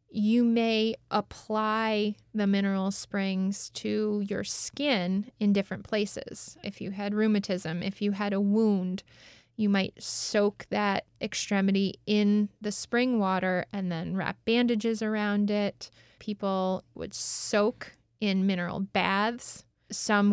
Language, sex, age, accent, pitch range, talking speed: English, female, 20-39, American, 190-220 Hz, 125 wpm